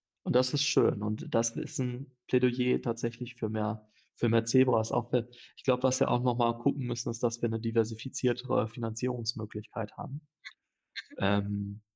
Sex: male